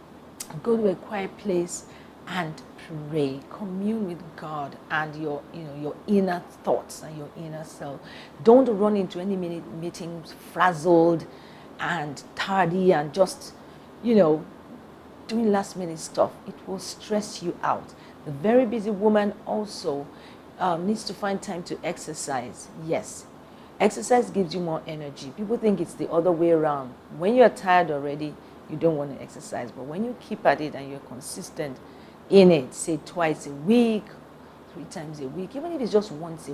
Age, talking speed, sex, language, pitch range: 40-59, 165 wpm, female, English, 150-195 Hz